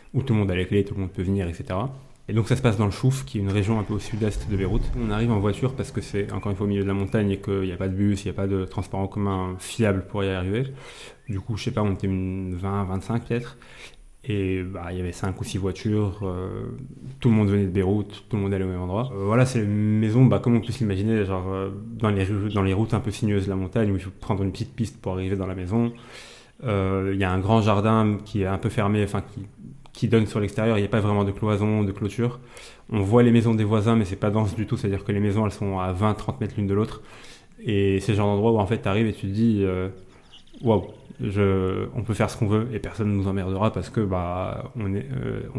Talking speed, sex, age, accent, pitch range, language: 290 wpm, male, 20-39, French, 95-110 Hz, French